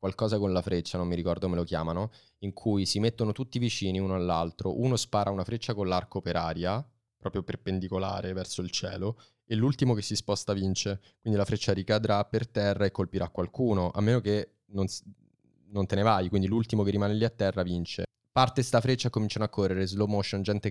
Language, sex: Italian, male